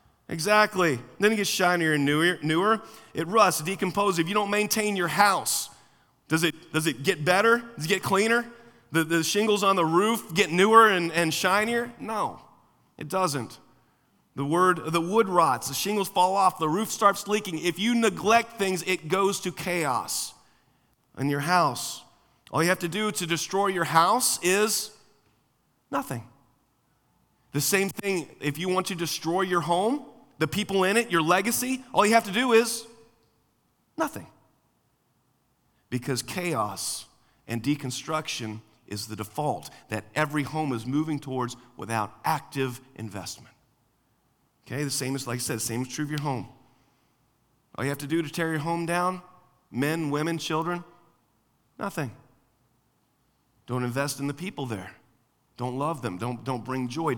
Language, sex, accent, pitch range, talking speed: English, male, American, 130-195 Hz, 165 wpm